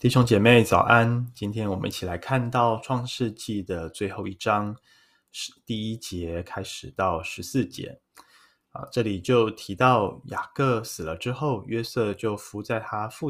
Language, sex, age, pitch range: Chinese, male, 20-39, 95-120 Hz